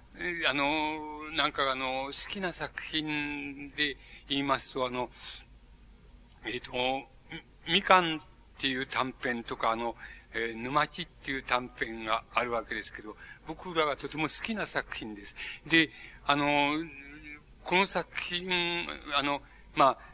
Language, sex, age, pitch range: Japanese, male, 60-79, 130-150 Hz